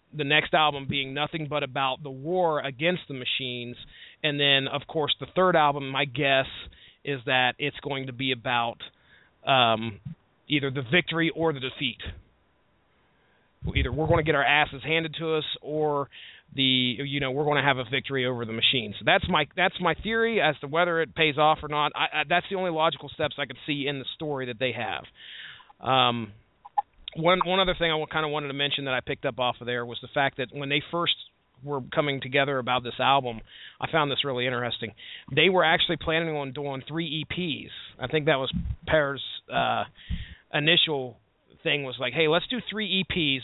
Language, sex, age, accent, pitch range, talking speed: English, male, 30-49, American, 130-155 Hz, 205 wpm